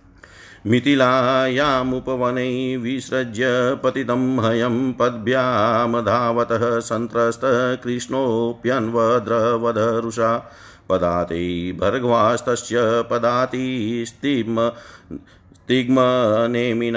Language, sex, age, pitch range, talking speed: Hindi, male, 50-69, 115-125 Hz, 40 wpm